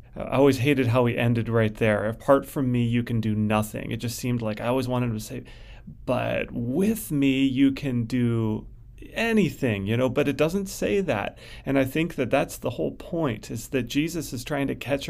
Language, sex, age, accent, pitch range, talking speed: English, male, 30-49, American, 115-135 Hz, 210 wpm